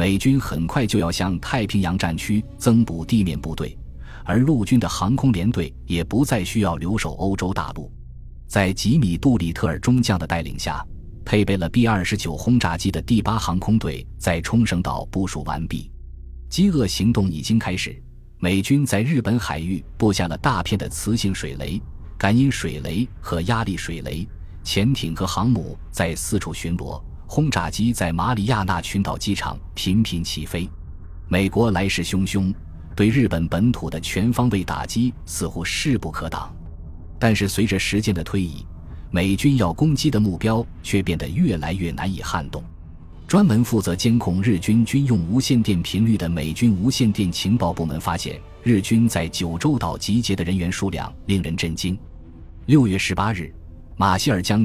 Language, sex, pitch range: Chinese, male, 85-110 Hz